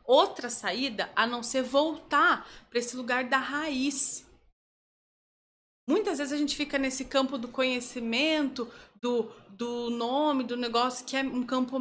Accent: Brazilian